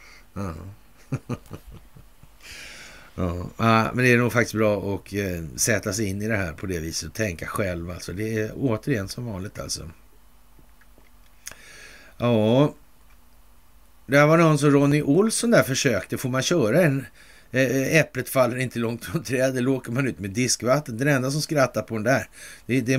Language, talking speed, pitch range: Swedish, 165 wpm, 90-130 Hz